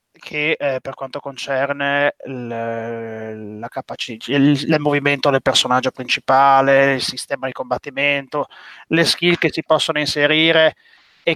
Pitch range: 135-155 Hz